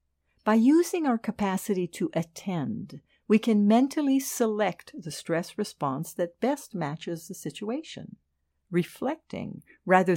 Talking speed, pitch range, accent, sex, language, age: 120 wpm, 145-215 Hz, American, female, English, 60-79